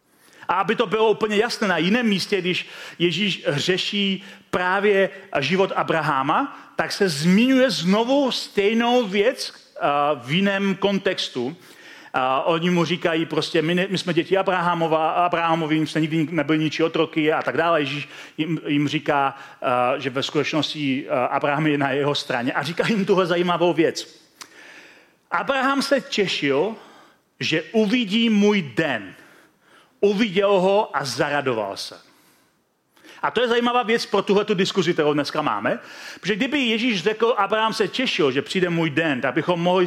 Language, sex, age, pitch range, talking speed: Czech, male, 40-59, 155-205 Hz, 145 wpm